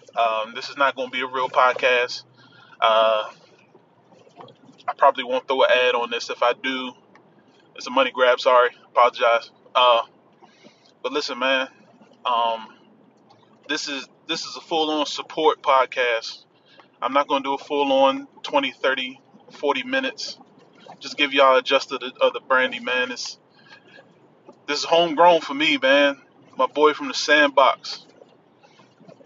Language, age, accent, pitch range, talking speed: English, 20-39, American, 125-175 Hz, 155 wpm